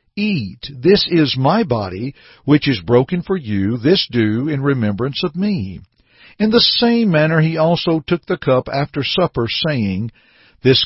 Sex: male